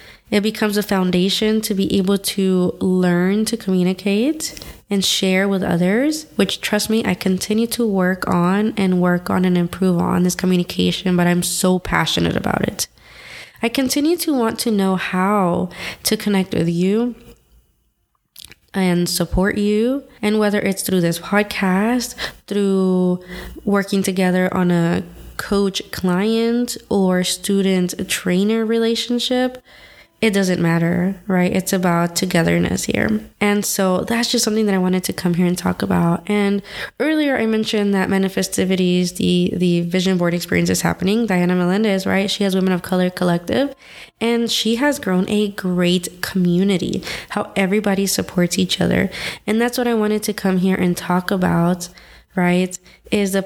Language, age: English, 20-39